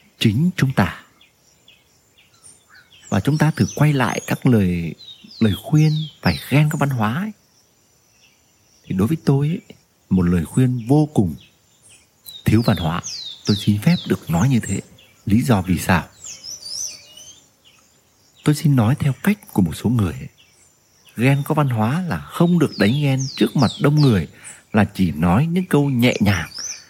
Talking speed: 165 wpm